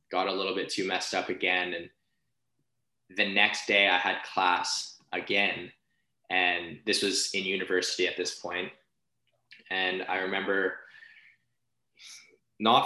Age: 20-39